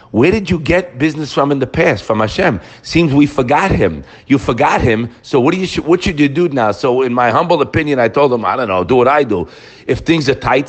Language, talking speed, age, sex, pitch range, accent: English, 245 wpm, 50-69, male, 130-180 Hz, American